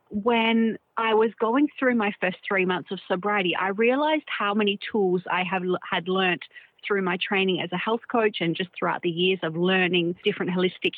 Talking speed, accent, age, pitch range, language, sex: 190 wpm, Australian, 30-49, 180-215 Hz, English, female